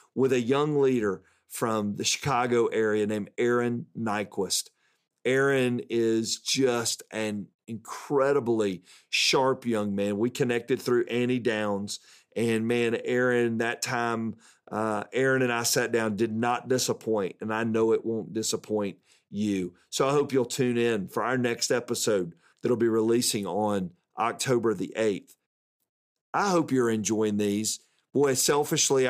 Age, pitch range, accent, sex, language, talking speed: 40-59, 110-135 Hz, American, male, English, 145 wpm